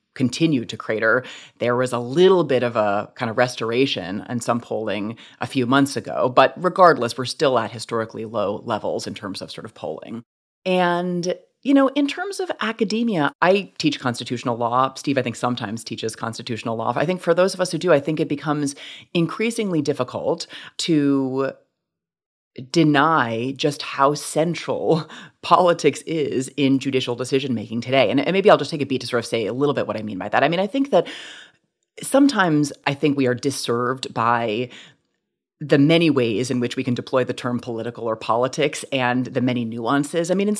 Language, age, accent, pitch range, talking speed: English, 30-49, American, 120-165 Hz, 190 wpm